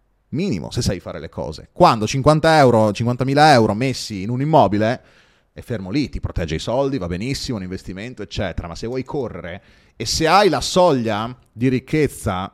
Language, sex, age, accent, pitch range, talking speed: Italian, male, 30-49, native, 90-130 Hz, 180 wpm